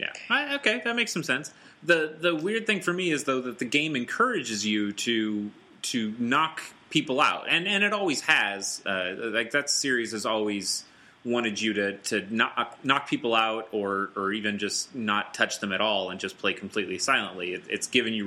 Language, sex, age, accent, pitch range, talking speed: English, male, 30-49, American, 95-120 Hz, 205 wpm